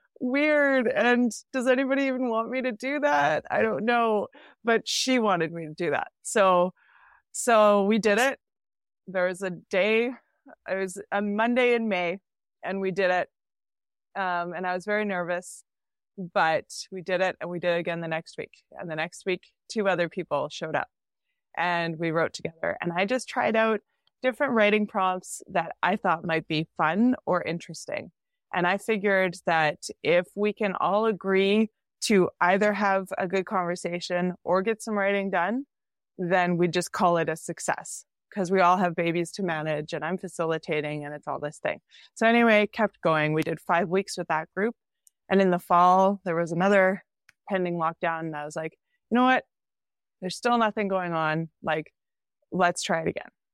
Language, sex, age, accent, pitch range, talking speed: English, female, 20-39, American, 170-220 Hz, 185 wpm